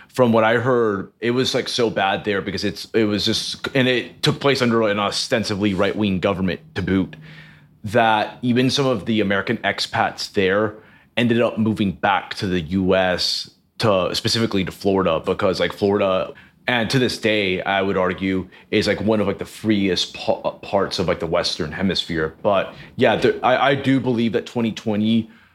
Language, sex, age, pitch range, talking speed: English, male, 30-49, 100-120 Hz, 190 wpm